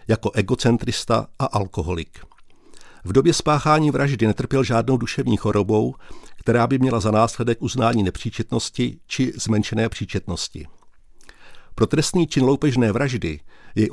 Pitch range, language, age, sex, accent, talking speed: 100-125 Hz, Czech, 50-69, male, native, 120 wpm